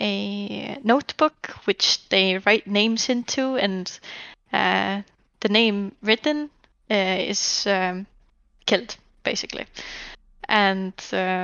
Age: 10-29